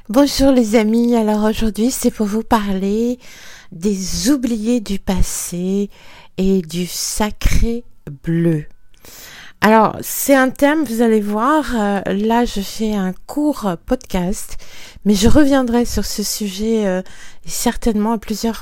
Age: 50-69